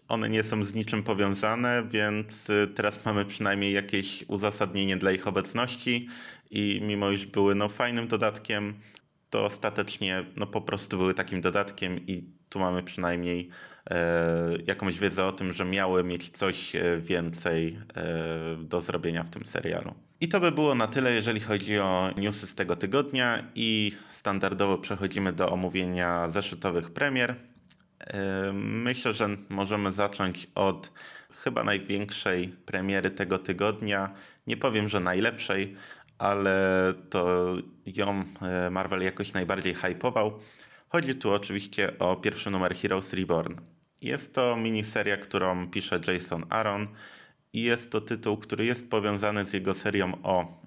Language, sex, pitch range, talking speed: Polish, male, 95-110 Hz, 140 wpm